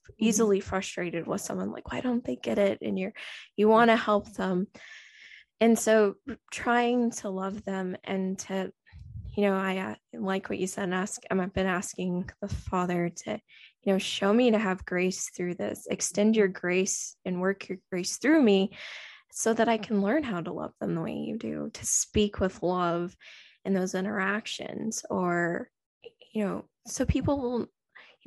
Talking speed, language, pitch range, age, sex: 185 wpm, English, 185-215 Hz, 20-39, female